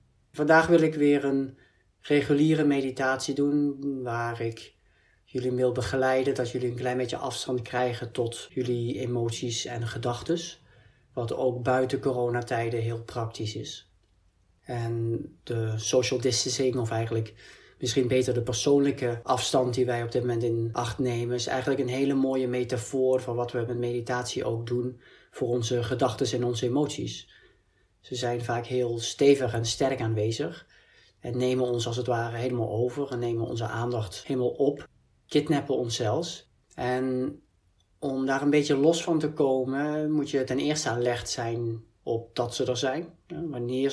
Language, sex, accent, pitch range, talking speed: Dutch, male, Dutch, 120-135 Hz, 160 wpm